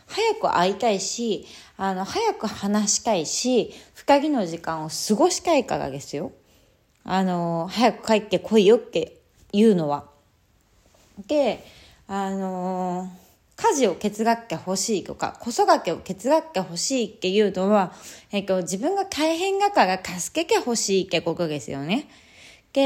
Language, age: Japanese, 20-39